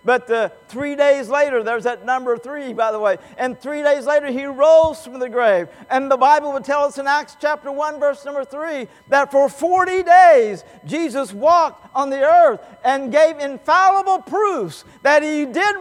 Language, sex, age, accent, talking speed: English, male, 50-69, American, 185 wpm